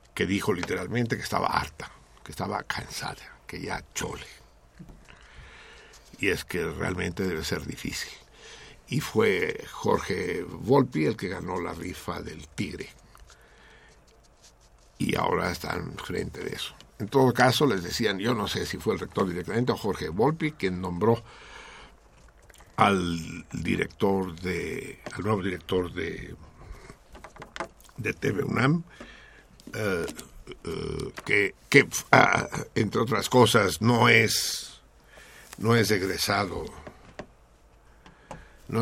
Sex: male